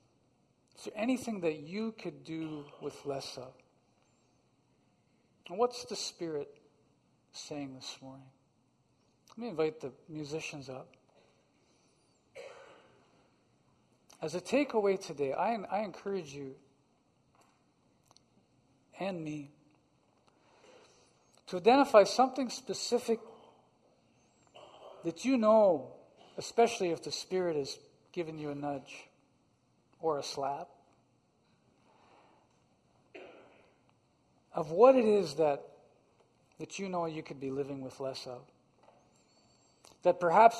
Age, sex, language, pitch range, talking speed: 50-69, male, English, 145-210 Hz, 100 wpm